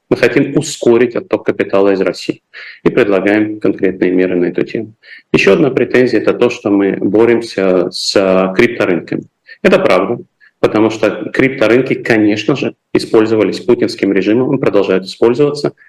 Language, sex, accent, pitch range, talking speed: Russian, male, native, 100-135 Hz, 135 wpm